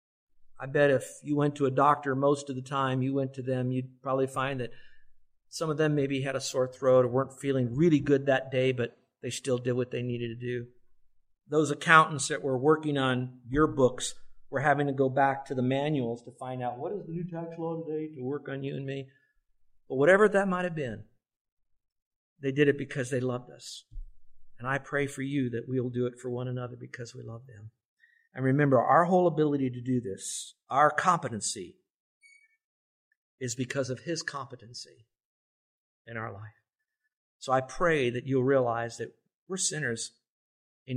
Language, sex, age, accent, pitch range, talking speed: English, male, 50-69, American, 120-145 Hz, 195 wpm